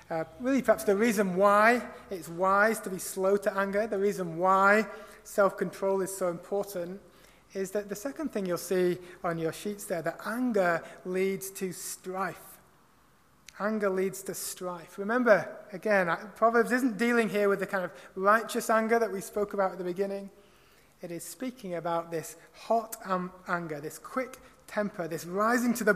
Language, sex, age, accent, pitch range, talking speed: English, male, 30-49, British, 185-215 Hz, 170 wpm